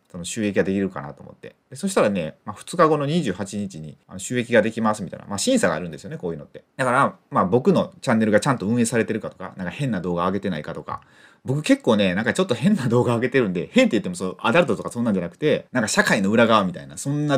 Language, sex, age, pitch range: Japanese, male, 30-49, 115-190 Hz